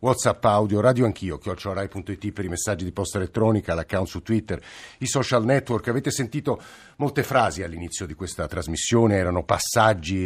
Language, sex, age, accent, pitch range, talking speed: Italian, male, 50-69, native, 100-120 Hz, 160 wpm